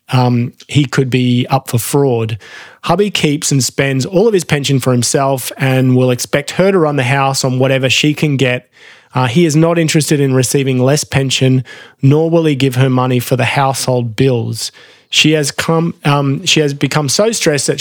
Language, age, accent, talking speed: English, 20-39, Australian, 200 wpm